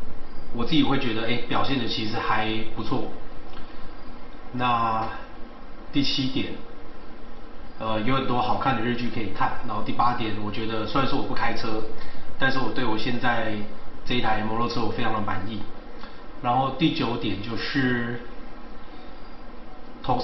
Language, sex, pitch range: Chinese, male, 110-155 Hz